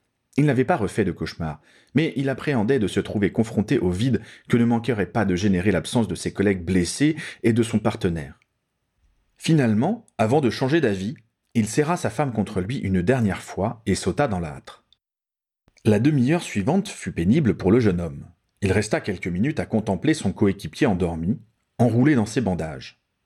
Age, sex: 40-59, male